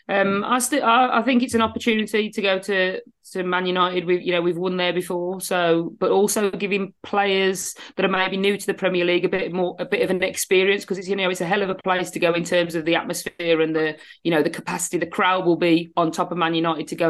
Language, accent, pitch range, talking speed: English, British, 170-195 Hz, 265 wpm